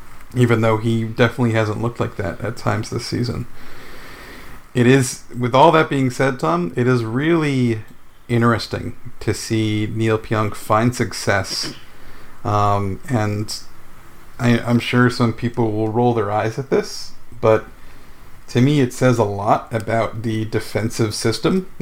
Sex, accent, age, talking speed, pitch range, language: male, American, 50-69, 150 wpm, 110-125 Hz, English